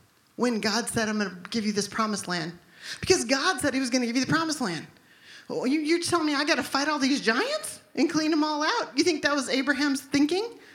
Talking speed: 245 wpm